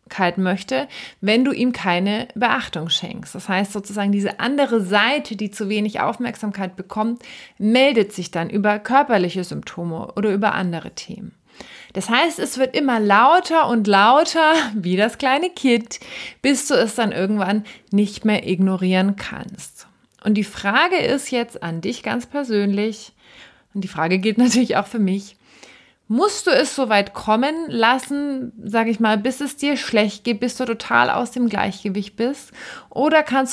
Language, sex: German, female